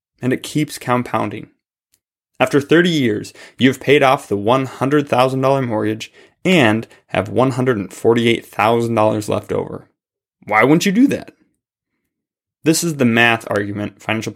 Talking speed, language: 125 wpm, English